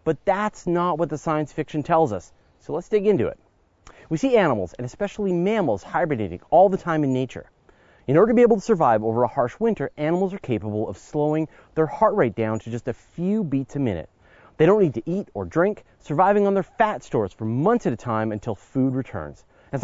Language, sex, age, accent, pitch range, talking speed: English, male, 30-49, American, 115-180 Hz, 225 wpm